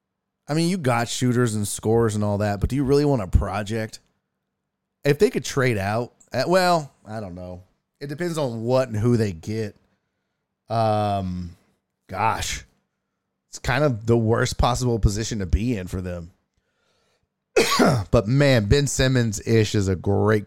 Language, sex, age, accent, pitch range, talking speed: English, male, 30-49, American, 95-145 Hz, 165 wpm